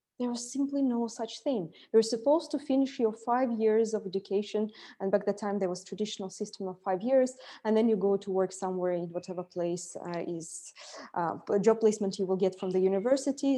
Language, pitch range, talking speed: English, 190-235 Hz, 210 wpm